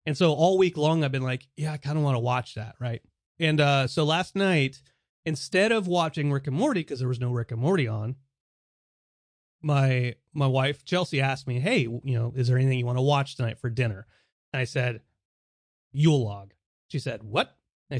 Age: 30-49